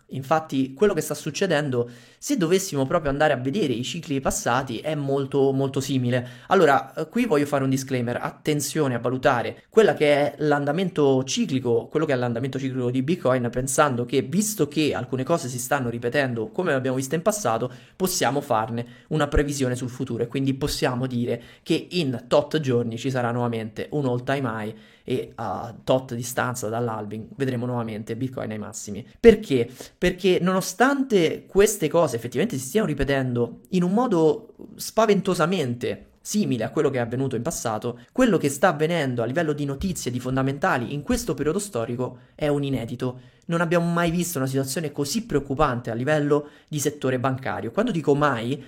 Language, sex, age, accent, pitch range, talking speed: Italian, male, 20-39, native, 125-155 Hz, 170 wpm